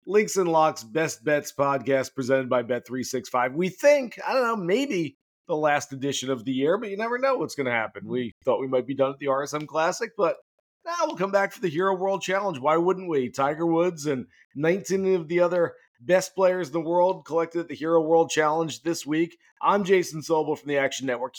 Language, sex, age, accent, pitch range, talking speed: English, male, 40-59, American, 140-195 Hz, 220 wpm